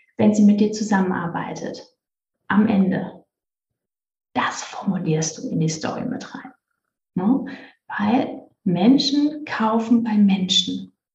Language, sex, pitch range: German, female, 210-265 Hz